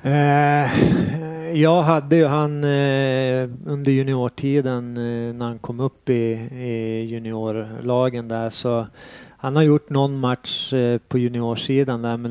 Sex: male